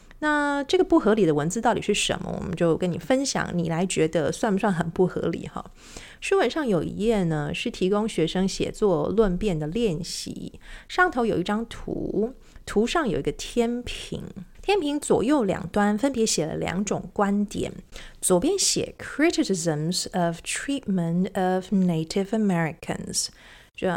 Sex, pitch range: female, 175-230 Hz